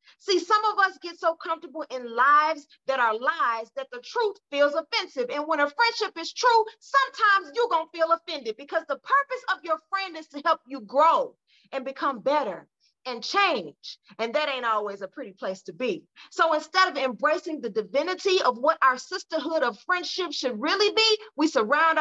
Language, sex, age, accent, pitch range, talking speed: English, female, 40-59, American, 255-345 Hz, 195 wpm